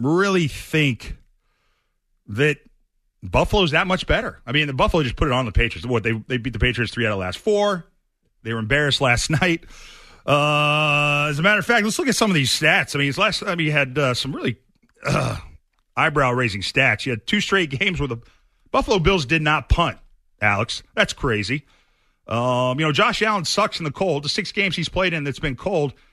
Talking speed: 215 wpm